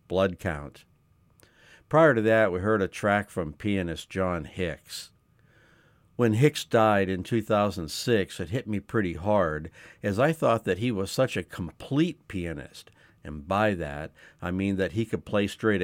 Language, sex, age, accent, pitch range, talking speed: English, male, 60-79, American, 85-110 Hz, 165 wpm